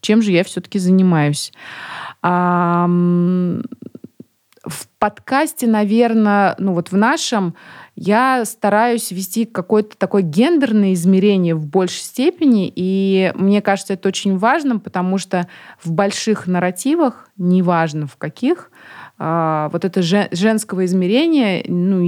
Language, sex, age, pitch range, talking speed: Russian, female, 20-39, 175-220 Hz, 115 wpm